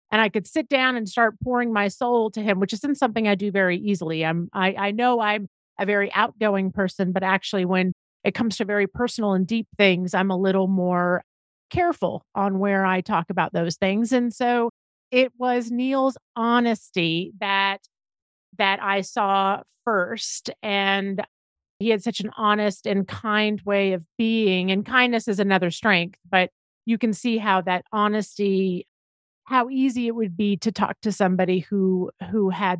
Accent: American